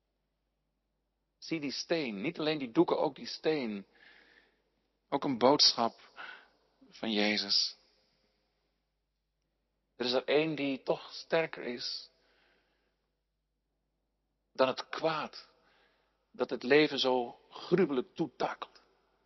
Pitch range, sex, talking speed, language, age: 130-195 Hz, male, 100 wpm, Dutch, 50-69